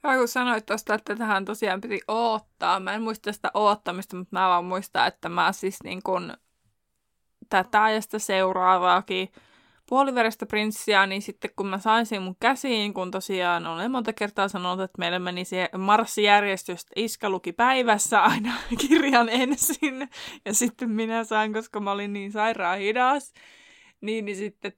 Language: Finnish